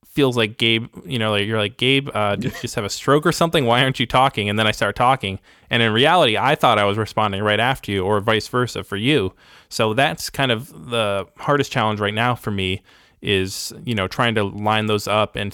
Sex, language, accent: male, English, American